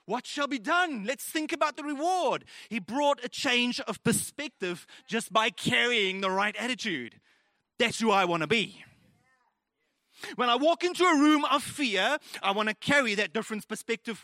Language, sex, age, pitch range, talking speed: English, male, 30-49, 190-270 Hz, 175 wpm